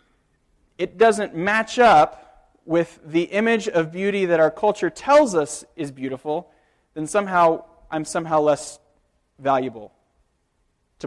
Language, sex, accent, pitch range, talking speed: English, male, American, 165-235 Hz, 125 wpm